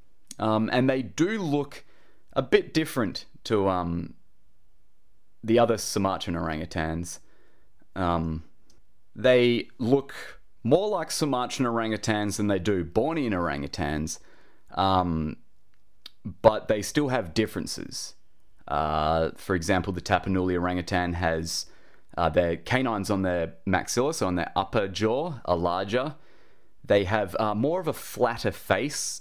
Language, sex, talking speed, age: English, male, 125 wpm, 20-39